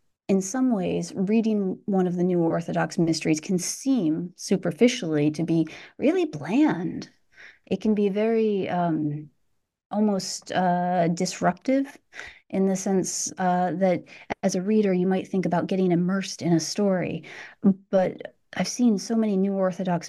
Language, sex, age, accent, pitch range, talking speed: English, female, 30-49, American, 175-215 Hz, 145 wpm